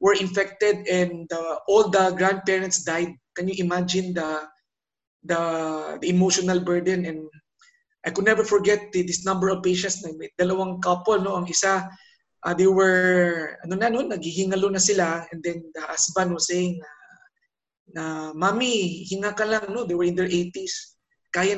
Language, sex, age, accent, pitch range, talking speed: English, male, 20-39, Filipino, 175-200 Hz, 170 wpm